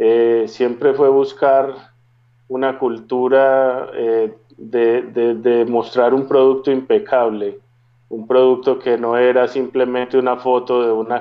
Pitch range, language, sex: 115-125 Hz, English, male